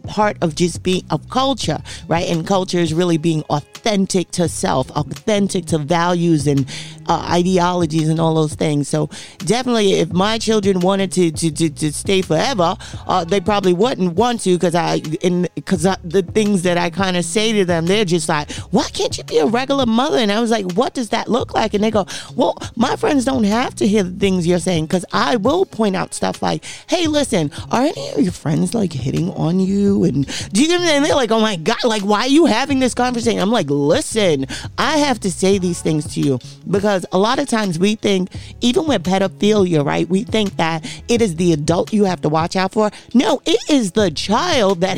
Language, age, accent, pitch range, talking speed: English, 40-59, American, 170-220 Hz, 210 wpm